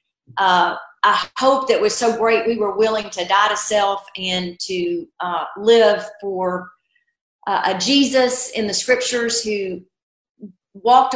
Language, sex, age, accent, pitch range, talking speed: English, female, 40-59, American, 195-240 Hz, 145 wpm